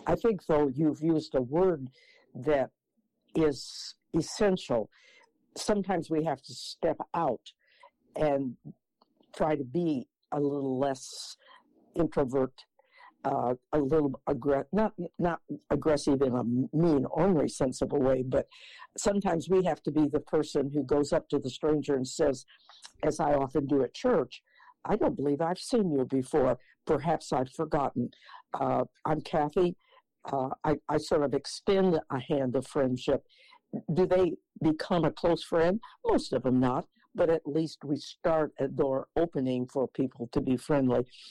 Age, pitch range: 60-79, 135-175 Hz